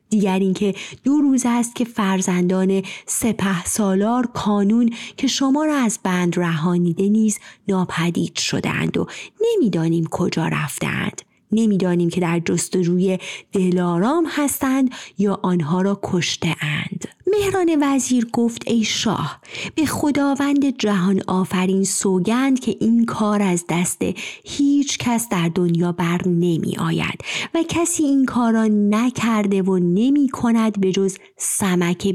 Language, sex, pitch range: Persian, female, 180-230 Hz